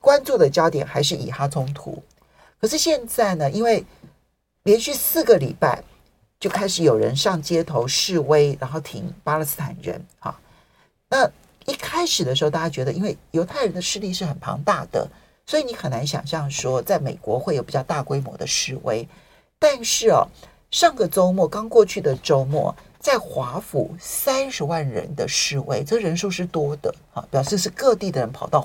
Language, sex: Chinese, male